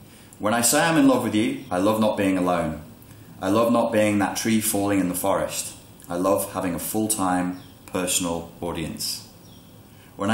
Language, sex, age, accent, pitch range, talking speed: English, male, 30-49, British, 90-105 Hz, 180 wpm